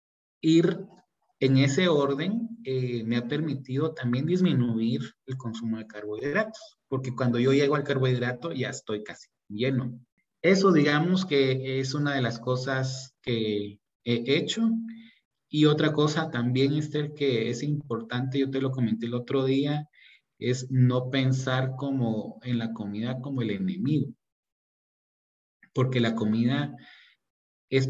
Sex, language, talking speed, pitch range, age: male, Spanish, 140 wpm, 120-145 Hz, 30-49